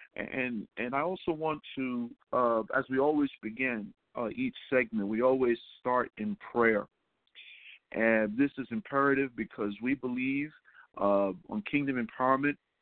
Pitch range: 120-140 Hz